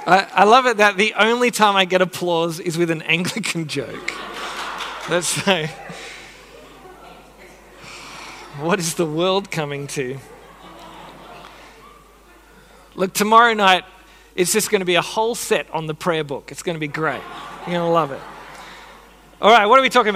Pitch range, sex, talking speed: 155-210 Hz, male, 165 wpm